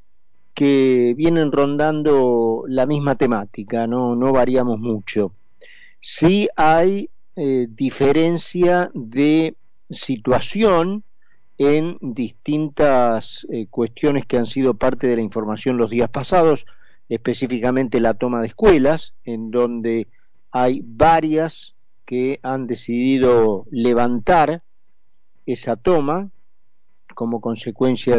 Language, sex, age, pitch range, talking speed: Spanish, male, 50-69, 120-150 Hz, 100 wpm